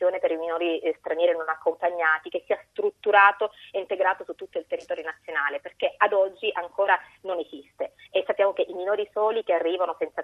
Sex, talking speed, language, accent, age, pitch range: female, 180 wpm, Italian, native, 30-49, 165-215 Hz